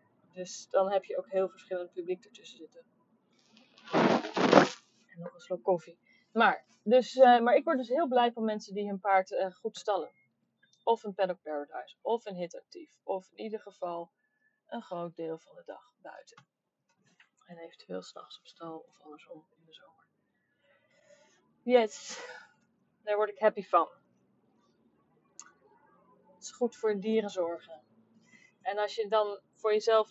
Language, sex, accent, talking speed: Dutch, female, Dutch, 155 wpm